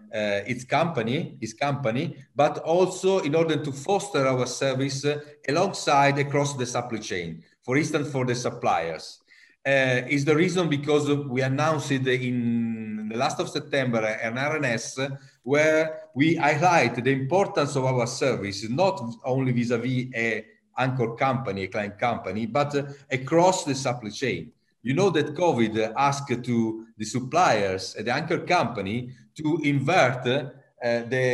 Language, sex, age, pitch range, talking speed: English, male, 40-59, 115-145 Hz, 145 wpm